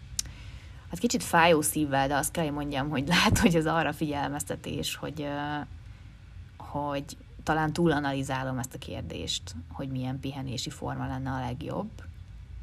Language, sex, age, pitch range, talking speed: Hungarian, female, 20-39, 120-150 Hz, 140 wpm